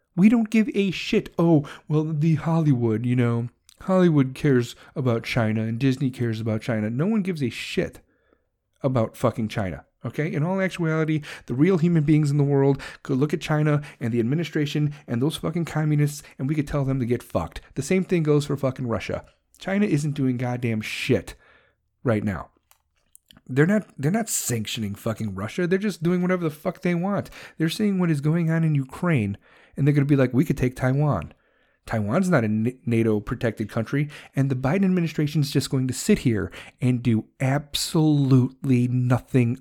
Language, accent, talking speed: English, American, 185 wpm